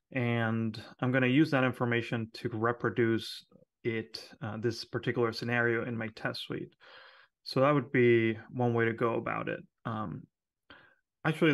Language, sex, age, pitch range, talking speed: English, male, 30-49, 115-130 Hz, 155 wpm